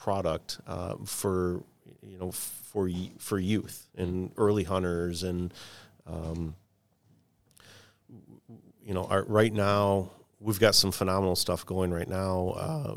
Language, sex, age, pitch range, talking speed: English, male, 40-59, 90-100 Hz, 125 wpm